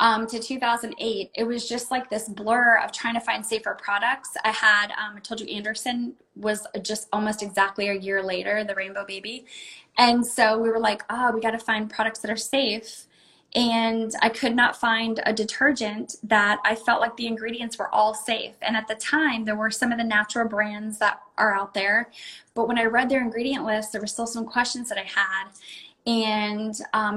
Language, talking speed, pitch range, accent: English, 205 wpm, 210-235 Hz, American